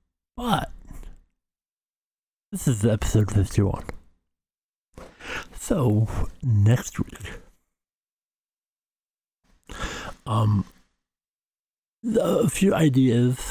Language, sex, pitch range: English, male, 100-115 Hz